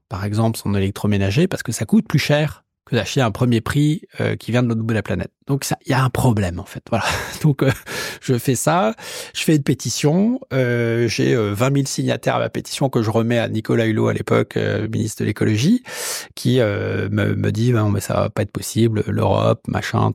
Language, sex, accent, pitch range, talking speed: French, male, French, 105-125 Hz, 225 wpm